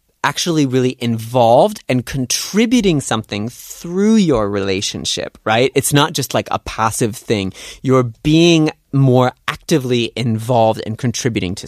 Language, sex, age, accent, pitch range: Korean, male, 30-49, American, 105-135 Hz